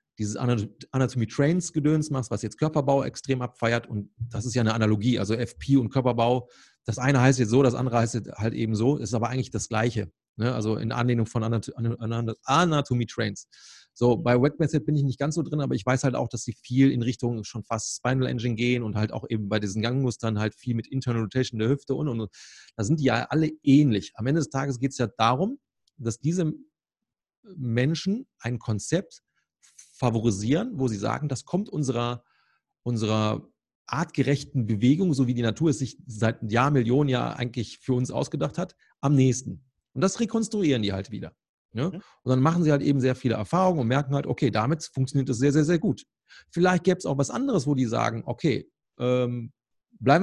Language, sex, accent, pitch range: German, male, German, 115-145 Hz